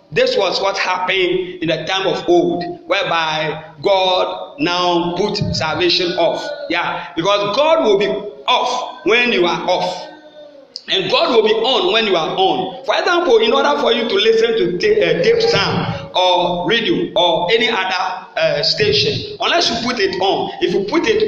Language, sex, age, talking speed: English, male, 50-69, 175 wpm